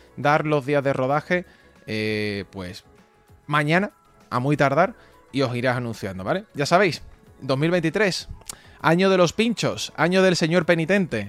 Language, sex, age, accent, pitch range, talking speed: English, male, 20-39, Spanish, 125-170 Hz, 145 wpm